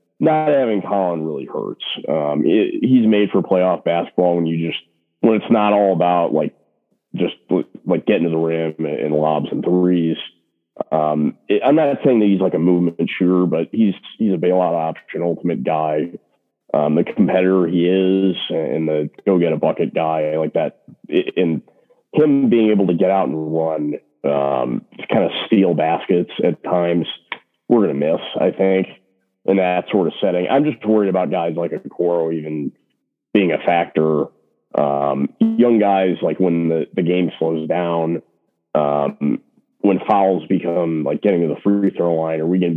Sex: male